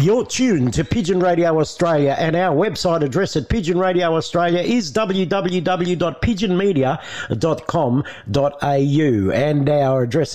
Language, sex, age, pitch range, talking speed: English, male, 60-79, 150-205 Hz, 110 wpm